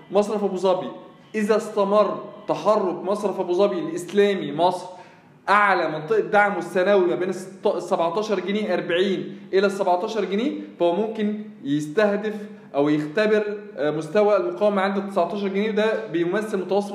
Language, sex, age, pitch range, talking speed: Arabic, male, 20-39, 185-215 Hz, 130 wpm